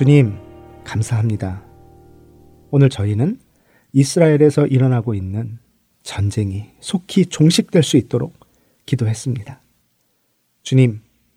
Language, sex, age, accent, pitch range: Korean, male, 40-59, native, 115-155 Hz